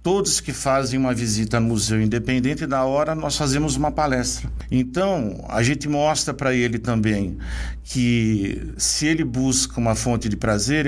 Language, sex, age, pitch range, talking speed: Portuguese, male, 50-69, 110-140 Hz, 160 wpm